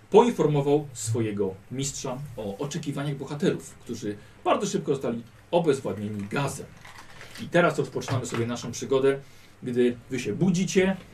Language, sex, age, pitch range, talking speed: Polish, male, 40-59, 120-165 Hz, 120 wpm